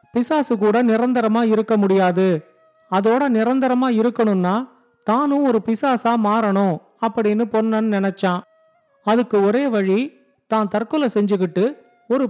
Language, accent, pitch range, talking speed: Tamil, native, 200-240 Hz, 80 wpm